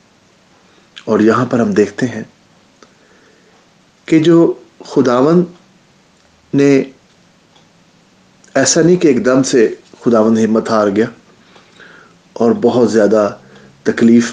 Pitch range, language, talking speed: 110-155 Hz, English, 95 wpm